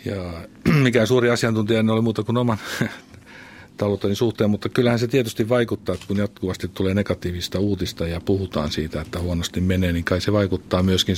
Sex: male